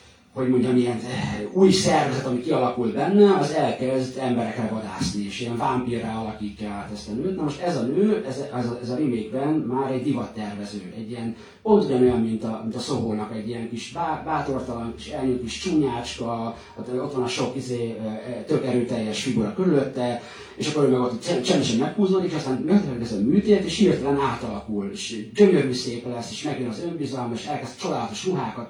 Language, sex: Hungarian, male